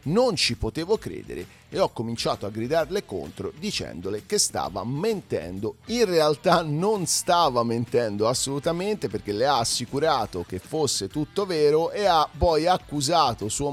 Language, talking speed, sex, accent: Italian, 145 wpm, male, native